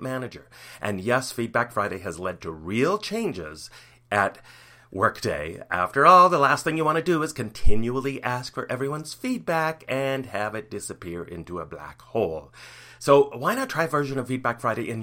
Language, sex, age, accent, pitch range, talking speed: English, male, 40-59, American, 115-145 Hz, 180 wpm